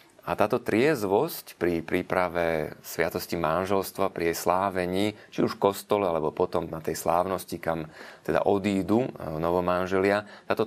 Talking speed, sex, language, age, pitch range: 135 wpm, male, Slovak, 30-49, 85-100 Hz